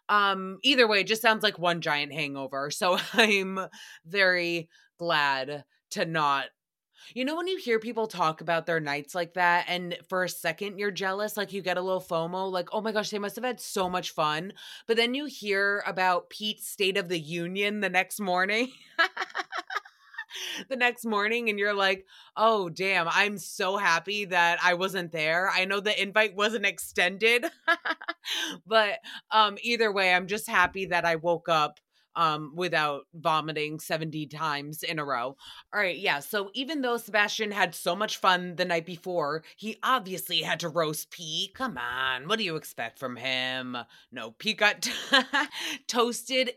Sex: female